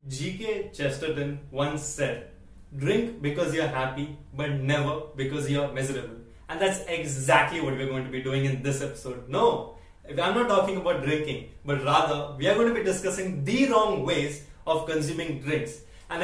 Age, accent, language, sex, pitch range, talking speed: 20-39, Indian, English, male, 140-175 Hz, 170 wpm